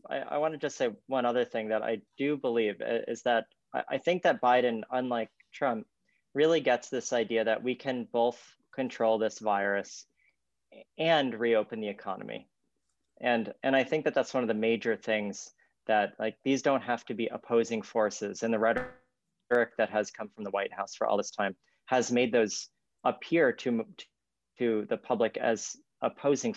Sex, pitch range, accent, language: male, 100-125 Hz, American, English